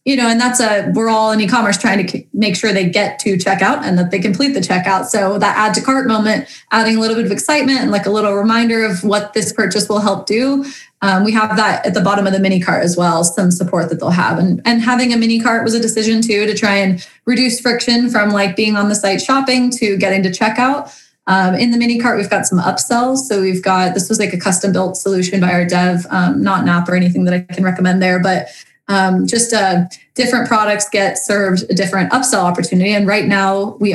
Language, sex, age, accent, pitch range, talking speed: English, female, 20-39, American, 185-225 Hz, 245 wpm